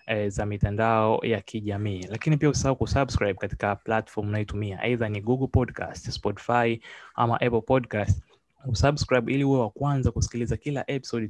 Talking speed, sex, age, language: 140 wpm, male, 20-39, Swahili